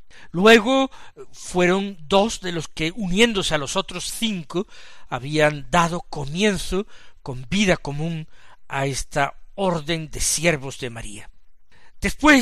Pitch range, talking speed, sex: 155-215 Hz, 120 wpm, male